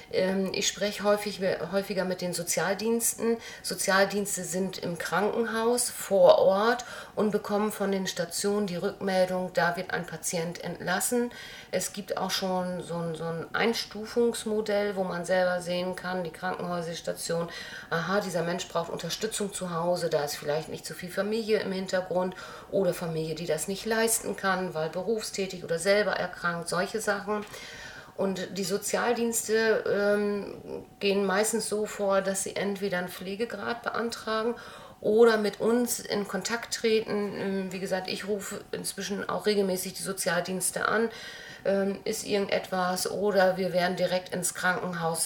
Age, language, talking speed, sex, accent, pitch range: 50-69, German, 145 wpm, female, German, 180-210 Hz